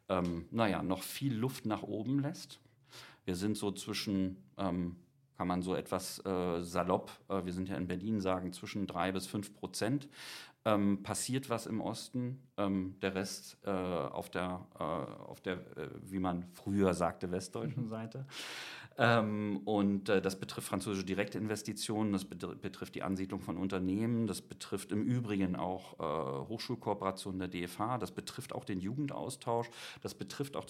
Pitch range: 90-110 Hz